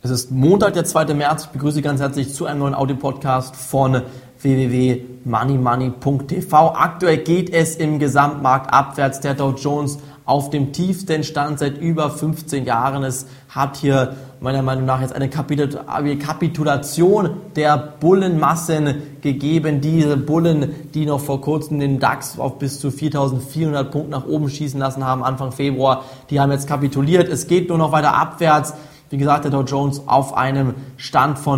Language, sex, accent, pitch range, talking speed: German, male, German, 135-160 Hz, 165 wpm